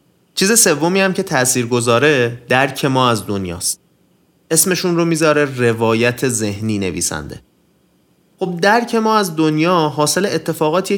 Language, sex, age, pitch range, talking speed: Persian, male, 30-49, 130-175 Hz, 125 wpm